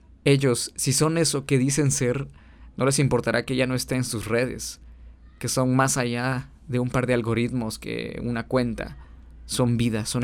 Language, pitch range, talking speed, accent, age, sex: Spanish, 105-140 Hz, 190 wpm, Mexican, 20-39, male